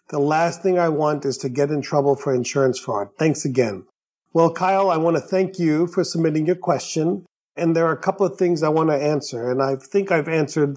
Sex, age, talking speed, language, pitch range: male, 40-59, 235 wpm, English, 140-165 Hz